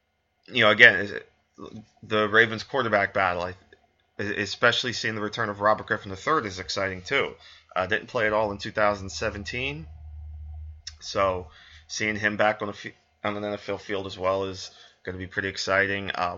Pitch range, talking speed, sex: 95-105 Hz, 160 wpm, male